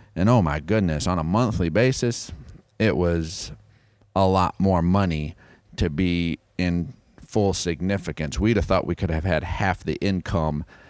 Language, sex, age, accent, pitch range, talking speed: English, male, 40-59, American, 85-105 Hz, 160 wpm